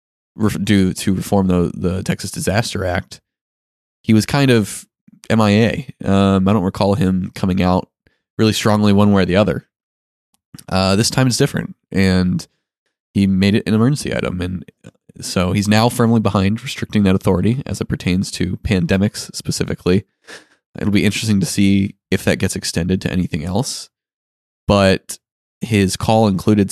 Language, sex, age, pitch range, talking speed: English, male, 20-39, 90-105 Hz, 155 wpm